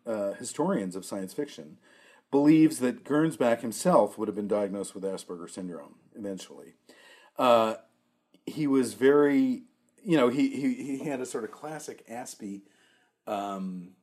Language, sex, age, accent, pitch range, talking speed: English, male, 40-59, American, 110-145 Hz, 140 wpm